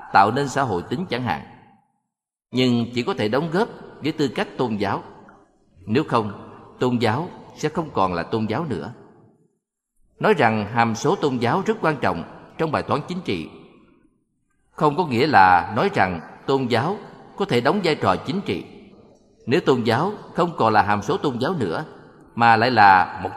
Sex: male